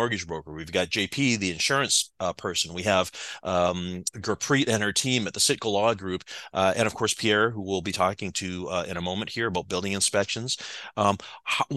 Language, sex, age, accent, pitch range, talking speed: English, male, 30-49, American, 105-145 Hz, 205 wpm